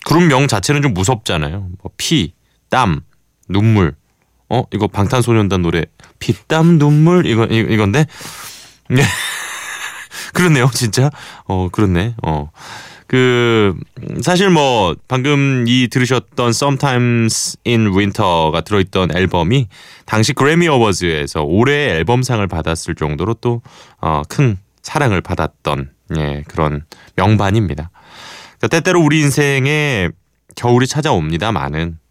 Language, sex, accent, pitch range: Korean, male, native, 85-120 Hz